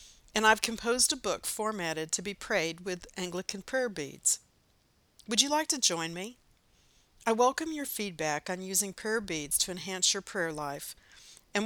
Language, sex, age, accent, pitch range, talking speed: English, female, 60-79, American, 170-215 Hz, 170 wpm